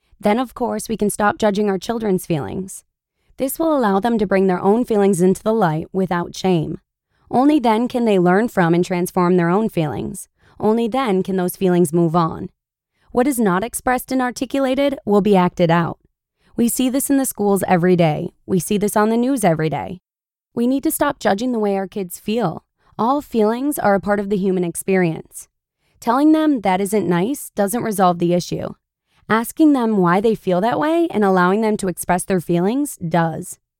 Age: 20-39